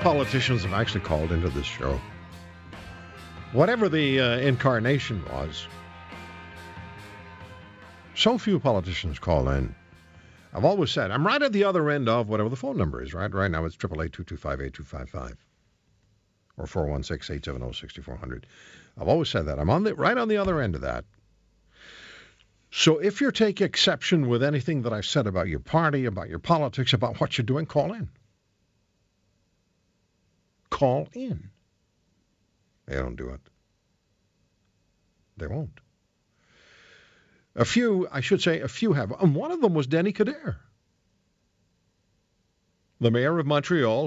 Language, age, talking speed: English, 60-79, 150 wpm